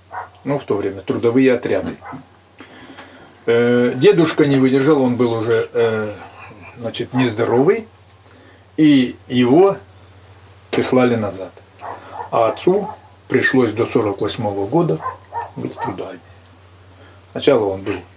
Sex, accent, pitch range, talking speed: male, native, 100-140 Hz, 95 wpm